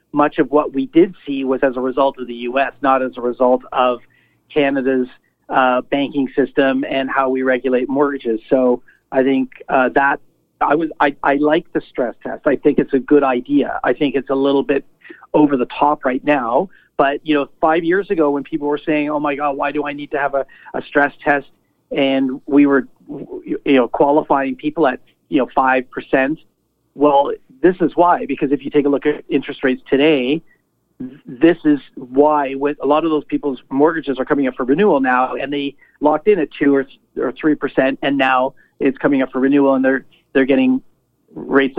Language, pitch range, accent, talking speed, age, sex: English, 135-150 Hz, American, 205 wpm, 40-59, male